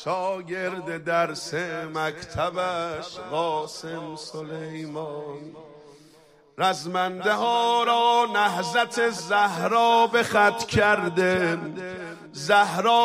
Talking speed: 65 wpm